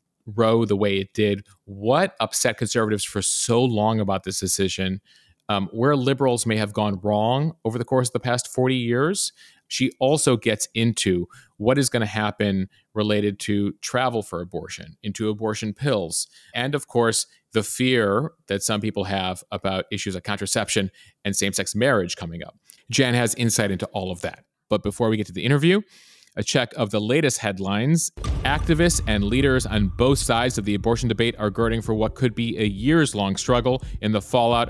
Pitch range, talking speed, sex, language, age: 105-130 Hz, 185 wpm, male, English, 40-59